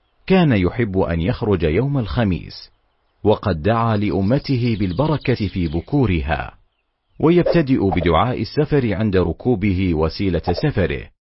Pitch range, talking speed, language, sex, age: 85-115 Hz, 100 wpm, Arabic, male, 40-59